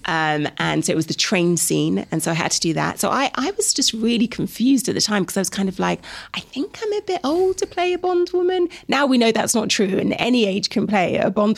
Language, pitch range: English, 170-255 Hz